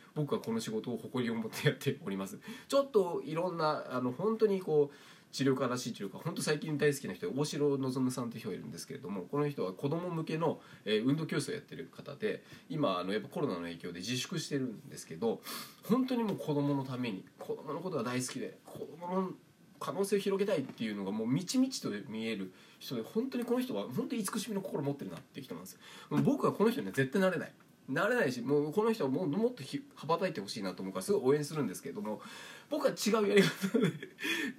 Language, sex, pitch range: Japanese, male, 130-215 Hz